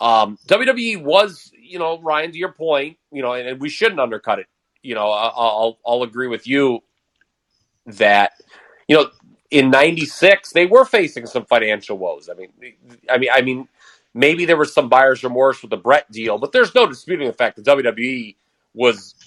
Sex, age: male, 30-49